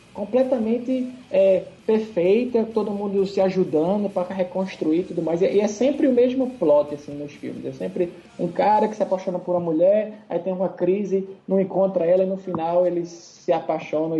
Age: 20-39